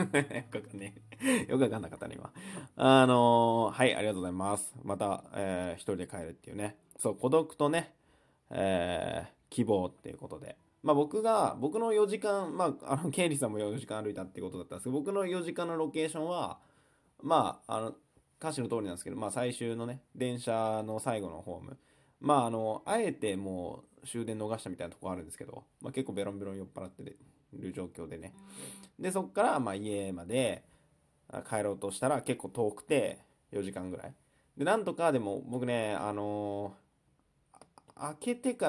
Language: Japanese